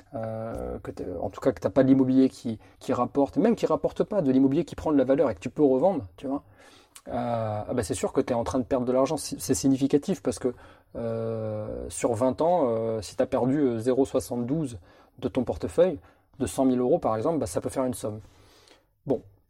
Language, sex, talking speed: French, male, 230 wpm